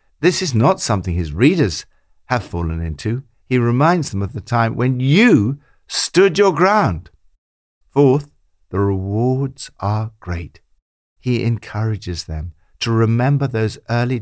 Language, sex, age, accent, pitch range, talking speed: English, male, 60-79, British, 85-145 Hz, 135 wpm